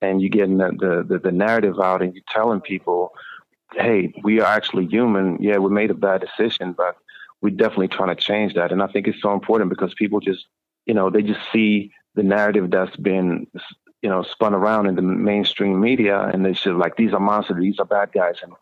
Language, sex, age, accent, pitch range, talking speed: English, male, 40-59, American, 95-105 Hz, 220 wpm